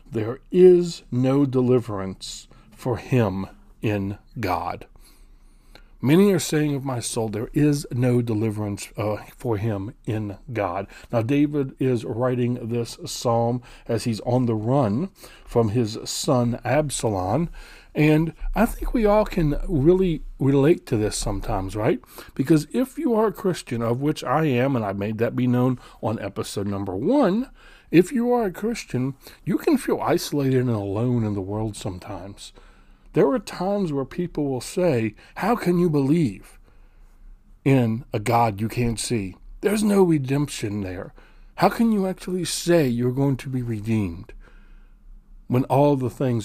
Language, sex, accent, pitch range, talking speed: English, male, American, 110-155 Hz, 155 wpm